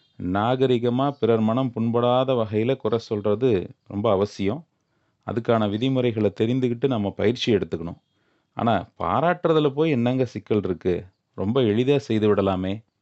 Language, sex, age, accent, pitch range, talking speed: Tamil, male, 30-49, native, 105-135 Hz, 115 wpm